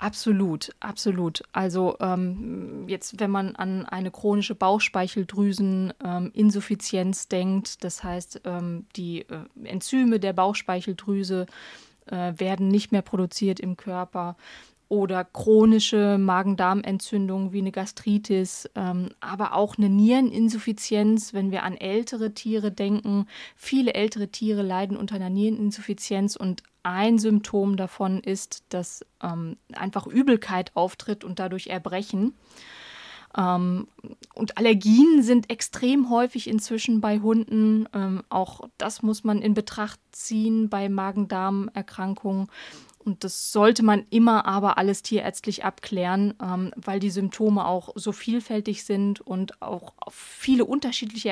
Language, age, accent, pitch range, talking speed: German, 20-39, German, 190-220 Hz, 125 wpm